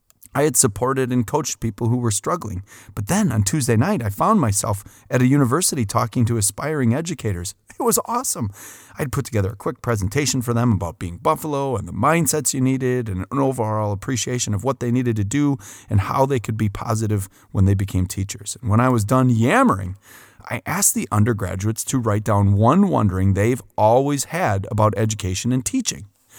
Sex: male